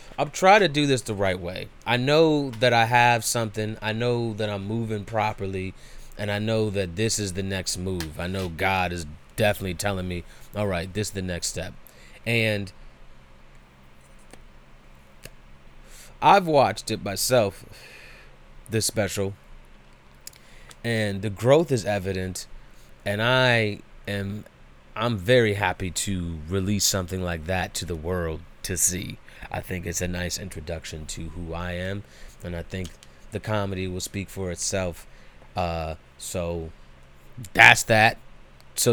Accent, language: American, English